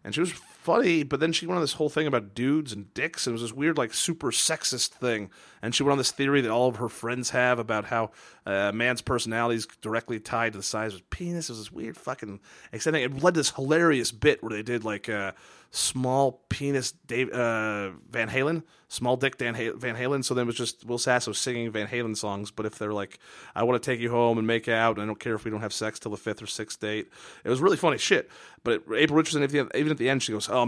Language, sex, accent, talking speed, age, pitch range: English, male, American, 260 wpm, 30-49, 110-130 Hz